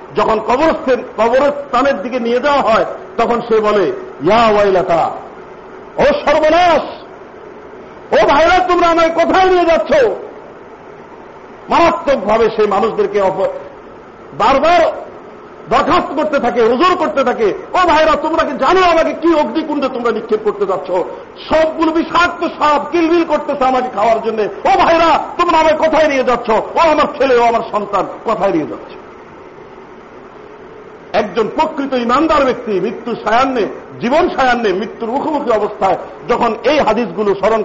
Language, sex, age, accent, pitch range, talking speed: Bengali, male, 50-69, native, 230-345 Hz, 130 wpm